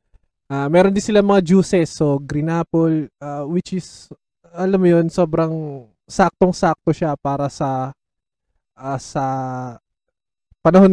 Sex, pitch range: male, 140-175 Hz